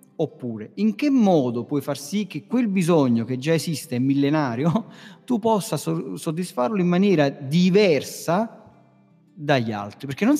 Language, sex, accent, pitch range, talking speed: Italian, male, native, 130-170 Hz, 140 wpm